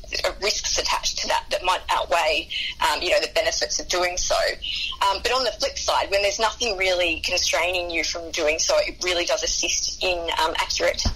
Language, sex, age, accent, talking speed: English, female, 20-39, Australian, 205 wpm